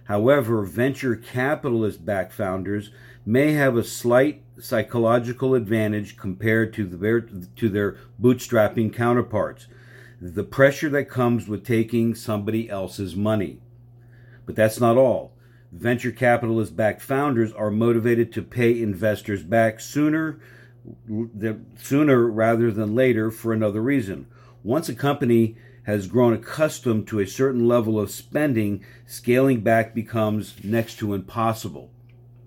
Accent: American